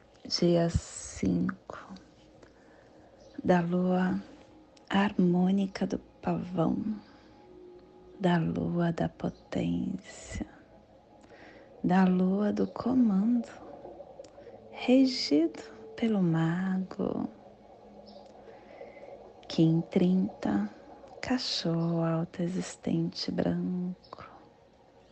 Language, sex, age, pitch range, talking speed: Portuguese, female, 30-49, 155-230 Hz, 60 wpm